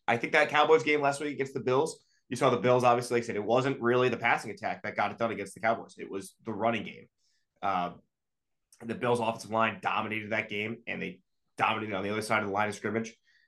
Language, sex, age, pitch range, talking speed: English, male, 20-39, 105-120 Hz, 240 wpm